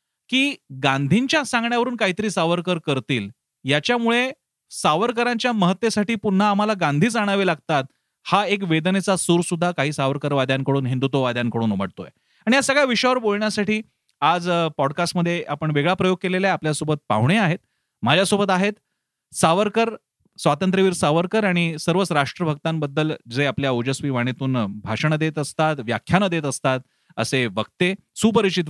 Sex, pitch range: male, 140-205 Hz